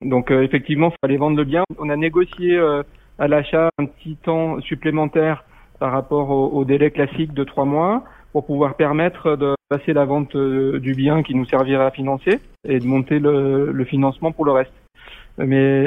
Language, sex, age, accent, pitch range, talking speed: French, male, 30-49, French, 135-150 Hz, 180 wpm